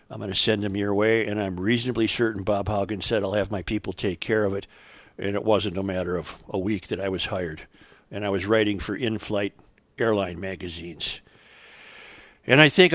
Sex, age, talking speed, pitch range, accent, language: male, 50-69, 210 wpm, 95-120 Hz, American, English